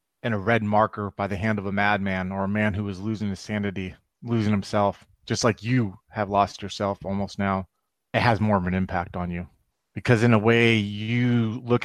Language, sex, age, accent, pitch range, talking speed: English, male, 30-49, American, 100-120 Hz, 215 wpm